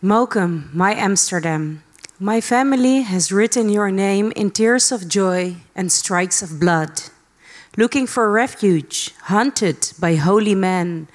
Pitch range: 170-220 Hz